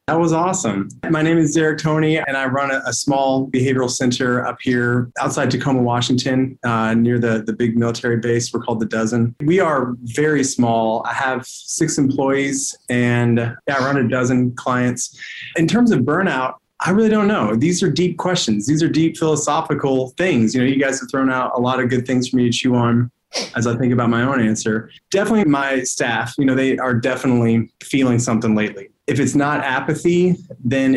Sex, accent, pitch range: male, American, 120-145 Hz